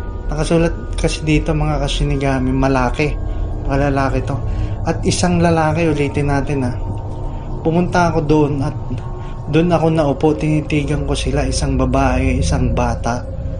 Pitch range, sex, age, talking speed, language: 100-150 Hz, male, 20-39, 130 wpm, Filipino